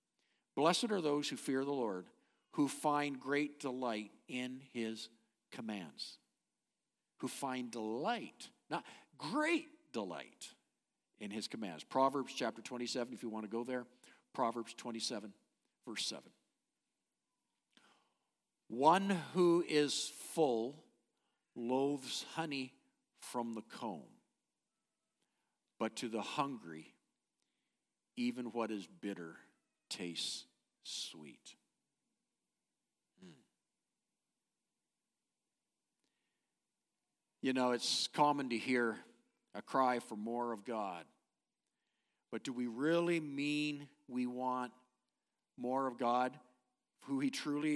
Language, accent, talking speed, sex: English, American, 100 wpm, male